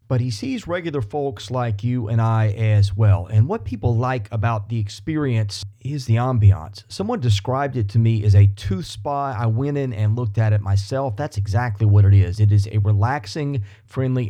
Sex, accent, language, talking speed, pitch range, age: male, American, English, 200 wpm, 105-140 Hz, 30-49